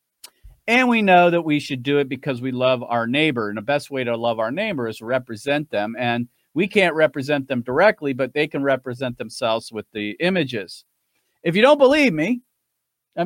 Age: 40-59